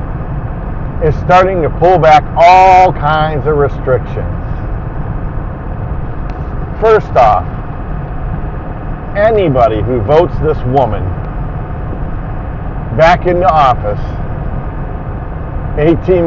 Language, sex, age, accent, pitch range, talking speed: English, male, 50-69, American, 120-160 Hz, 75 wpm